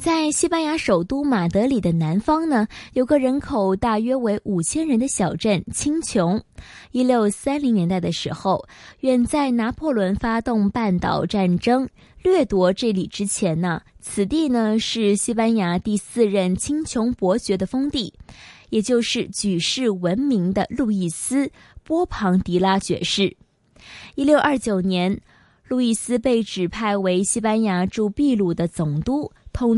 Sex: female